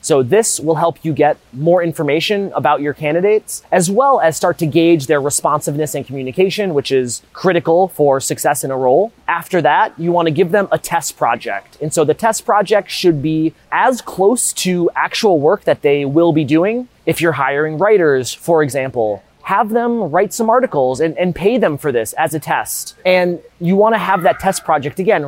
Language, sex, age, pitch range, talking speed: English, male, 30-49, 145-185 Hz, 200 wpm